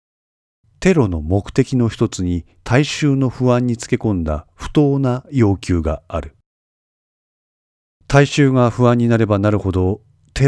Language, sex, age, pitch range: Japanese, male, 40-59, 85-120 Hz